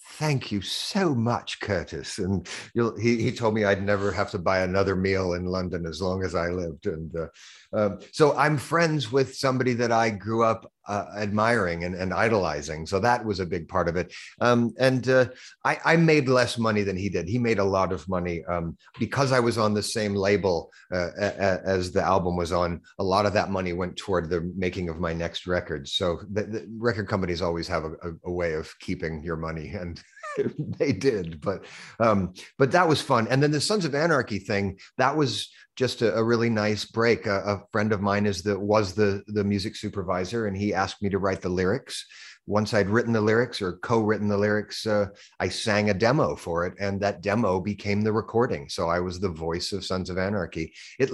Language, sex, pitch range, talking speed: English, male, 90-115 Hz, 220 wpm